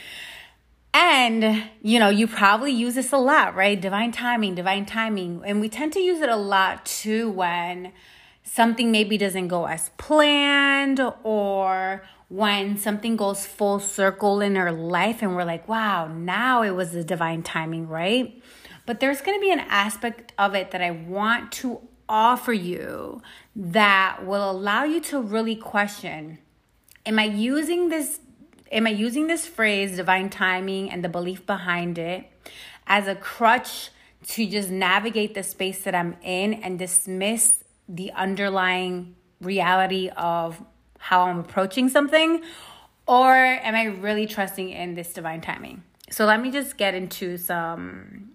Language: English